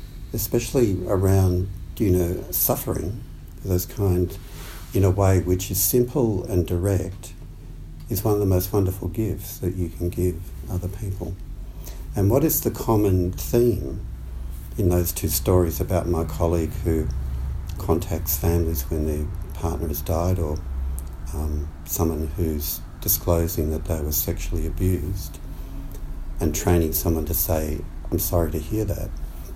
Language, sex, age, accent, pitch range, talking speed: English, male, 60-79, Australian, 80-95 Hz, 140 wpm